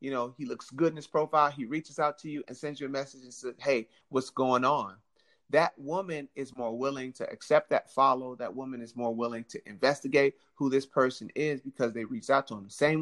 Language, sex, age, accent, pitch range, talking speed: English, male, 30-49, American, 125-150 Hz, 235 wpm